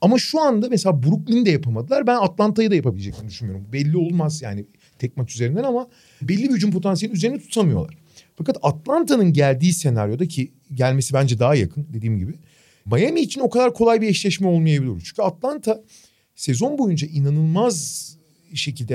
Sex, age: male, 40-59